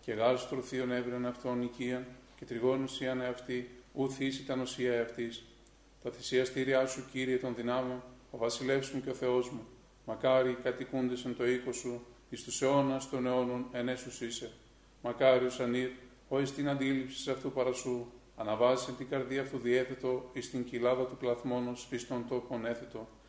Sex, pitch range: male, 120-130 Hz